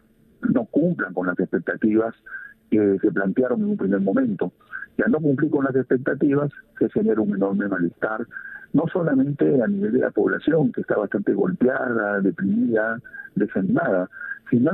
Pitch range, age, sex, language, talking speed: 100-150 Hz, 50-69, male, Spanish, 155 wpm